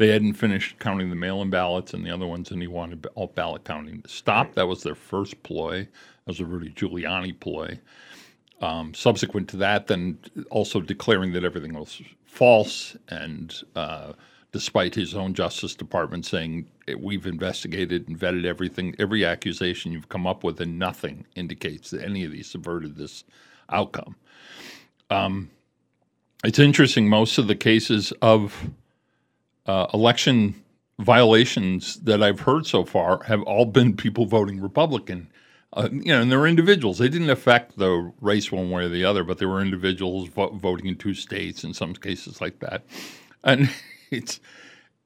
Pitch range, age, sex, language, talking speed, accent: 90-110 Hz, 50-69, male, English, 165 wpm, American